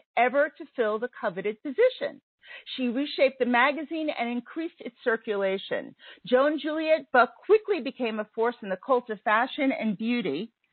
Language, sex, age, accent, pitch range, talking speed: English, female, 50-69, American, 220-295 Hz, 155 wpm